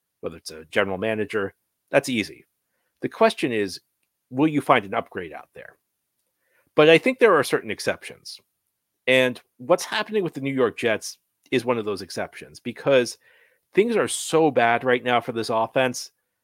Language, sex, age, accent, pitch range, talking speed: English, male, 40-59, American, 110-155 Hz, 170 wpm